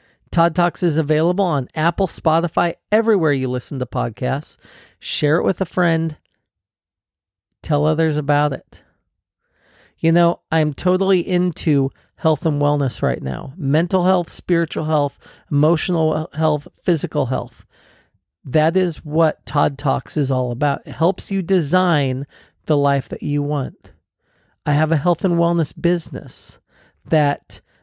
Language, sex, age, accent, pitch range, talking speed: English, male, 40-59, American, 130-170 Hz, 140 wpm